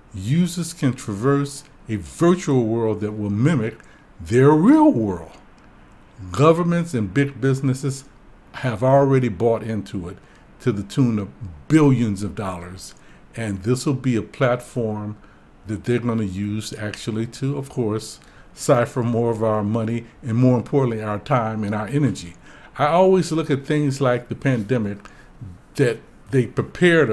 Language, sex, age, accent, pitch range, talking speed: English, male, 60-79, American, 105-140 Hz, 145 wpm